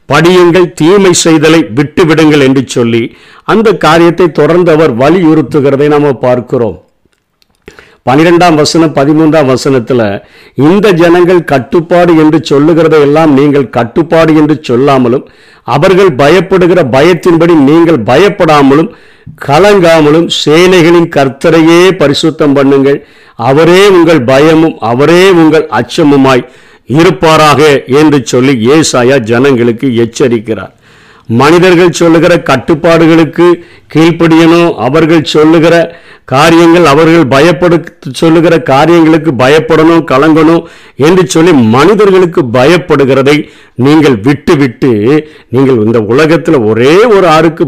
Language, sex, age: Tamil, male, 50-69